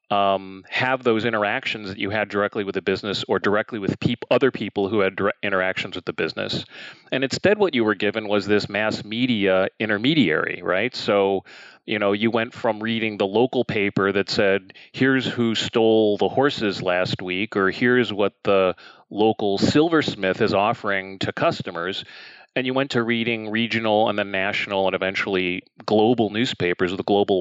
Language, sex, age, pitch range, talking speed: English, male, 30-49, 100-125 Hz, 170 wpm